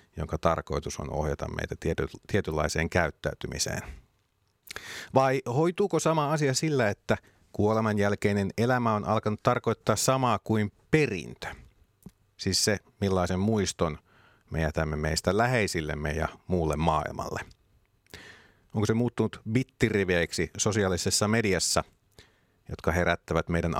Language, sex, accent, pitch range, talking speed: Finnish, male, native, 85-110 Hz, 105 wpm